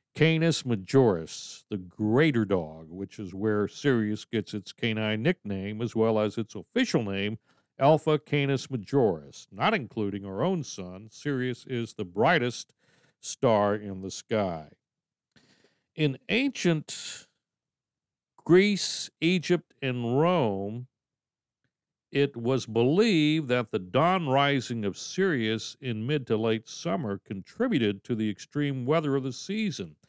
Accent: American